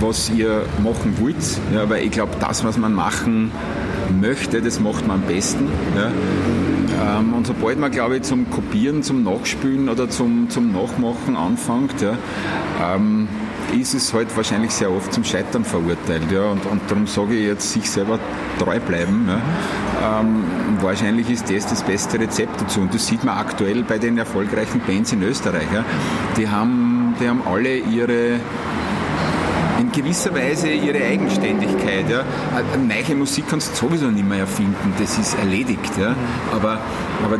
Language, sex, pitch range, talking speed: German, male, 110-155 Hz, 165 wpm